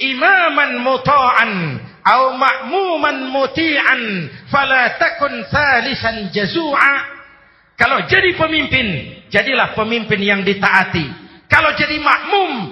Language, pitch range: Indonesian, 165-225 Hz